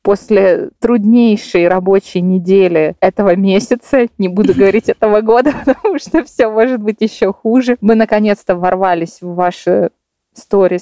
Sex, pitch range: female, 180-235 Hz